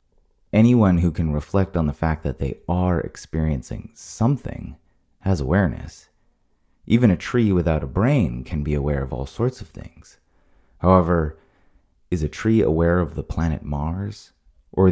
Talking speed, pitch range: 155 wpm, 75-100 Hz